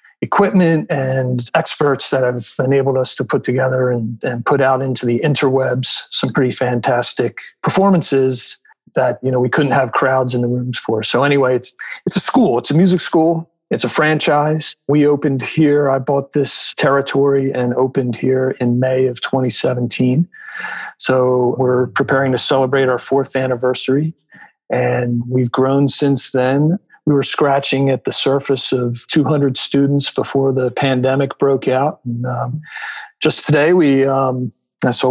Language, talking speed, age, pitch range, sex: English, 160 wpm, 40-59, 130-150 Hz, male